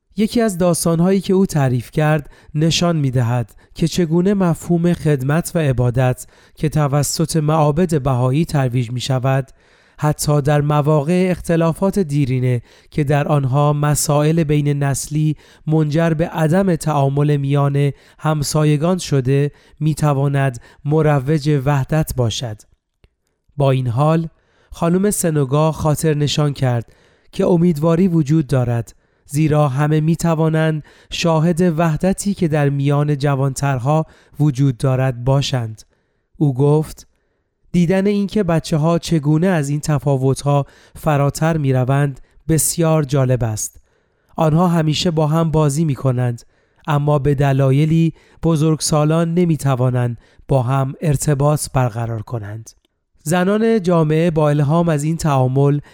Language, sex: Persian, male